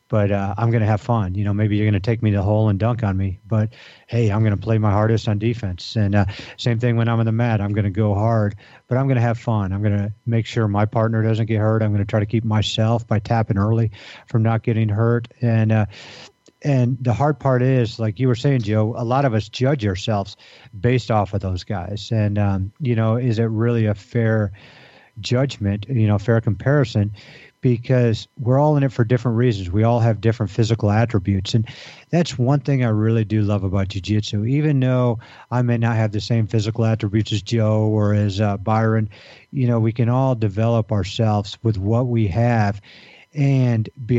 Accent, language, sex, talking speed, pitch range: American, English, male, 225 wpm, 105-120 Hz